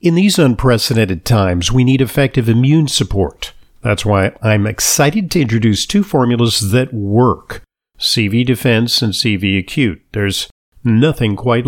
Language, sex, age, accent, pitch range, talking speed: English, male, 50-69, American, 105-135 Hz, 140 wpm